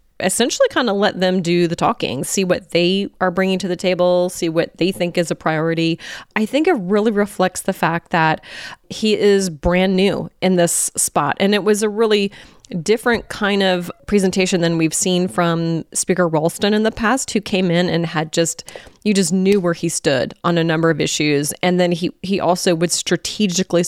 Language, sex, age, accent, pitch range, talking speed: English, female, 30-49, American, 170-195 Hz, 200 wpm